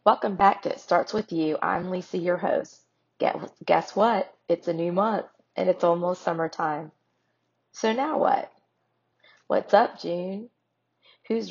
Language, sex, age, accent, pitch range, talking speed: English, female, 30-49, American, 155-190 Hz, 150 wpm